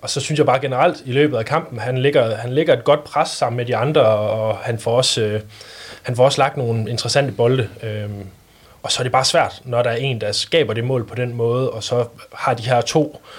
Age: 20-39